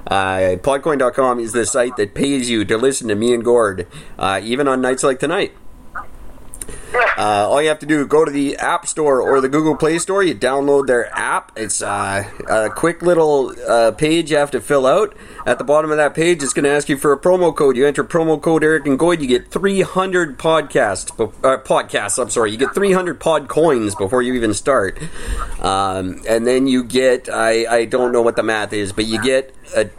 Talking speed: 220 wpm